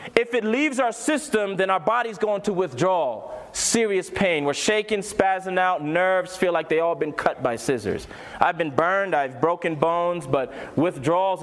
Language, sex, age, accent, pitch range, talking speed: English, male, 30-49, American, 145-195 Hz, 180 wpm